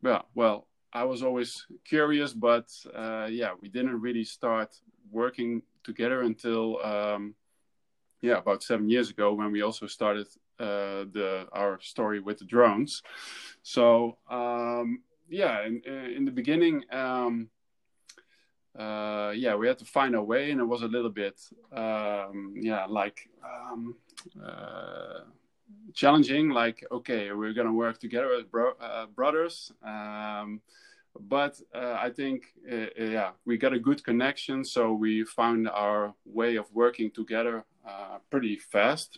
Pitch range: 105-130 Hz